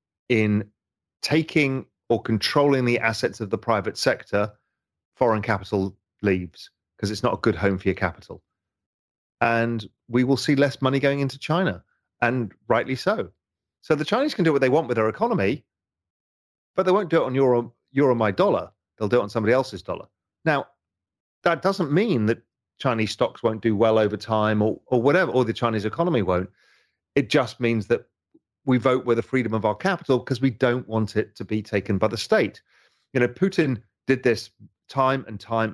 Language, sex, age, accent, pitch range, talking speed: English, male, 40-59, British, 105-130 Hz, 190 wpm